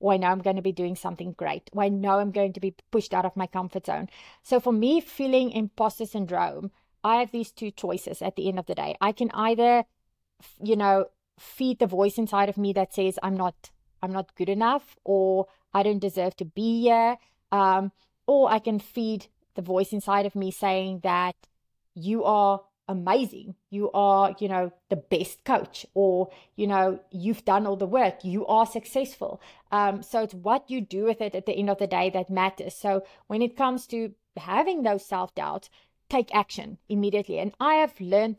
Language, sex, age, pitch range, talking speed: English, female, 30-49, 190-225 Hz, 205 wpm